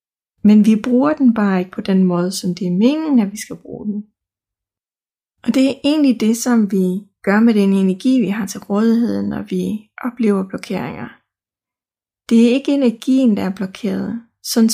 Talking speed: 185 wpm